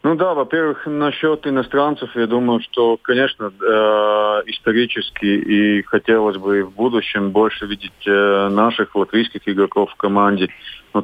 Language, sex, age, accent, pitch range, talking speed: Russian, male, 30-49, native, 95-110 Hz, 135 wpm